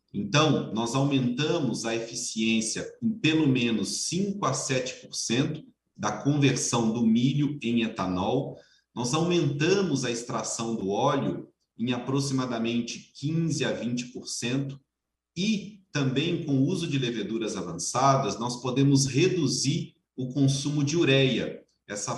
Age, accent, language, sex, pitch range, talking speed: 40-59, Brazilian, Portuguese, male, 115-145 Hz, 120 wpm